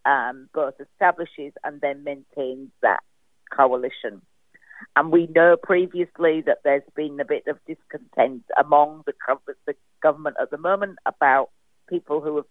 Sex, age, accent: female, 50-69, British